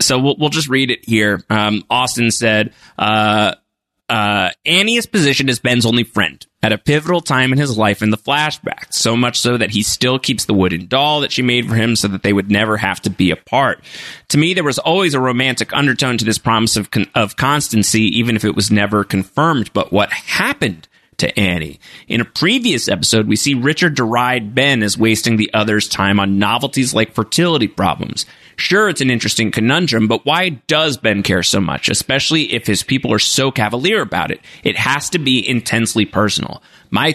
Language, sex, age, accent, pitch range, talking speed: English, male, 30-49, American, 105-140 Hz, 200 wpm